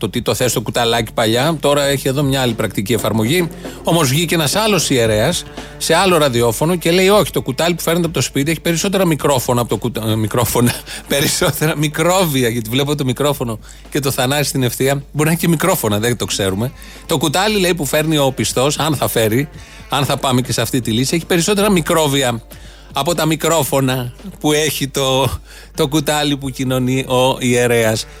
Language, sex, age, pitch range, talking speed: Greek, male, 30-49, 125-160 Hz, 185 wpm